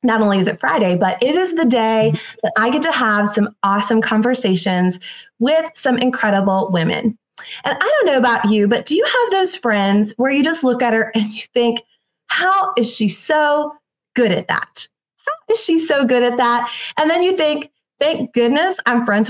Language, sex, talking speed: English, female, 200 wpm